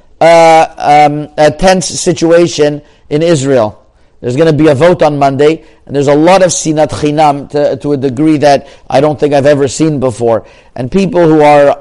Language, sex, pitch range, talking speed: English, male, 140-165 Hz, 195 wpm